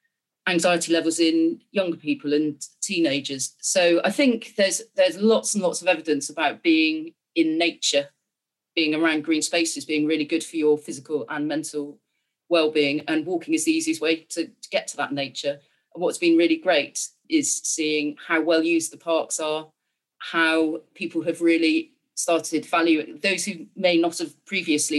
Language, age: English, 30-49